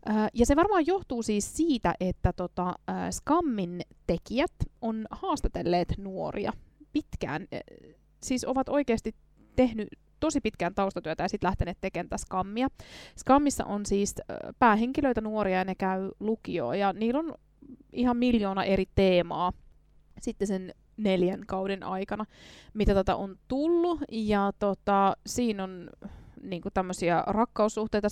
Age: 20-39